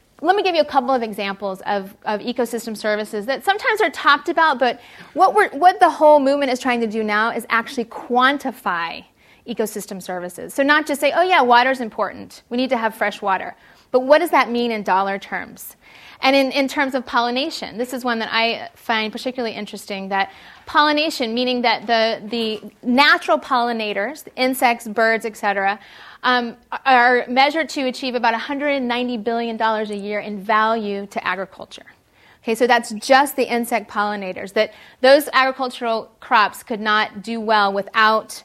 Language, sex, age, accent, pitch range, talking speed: English, female, 30-49, American, 215-265 Hz, 175 wpm